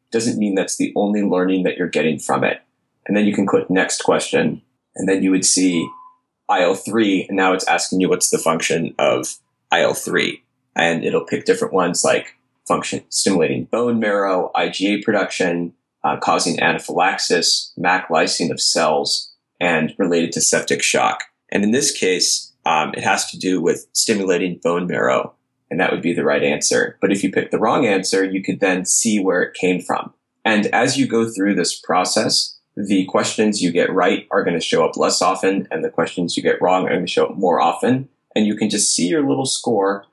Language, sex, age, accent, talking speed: English, male, 20-39, American, 200 wpm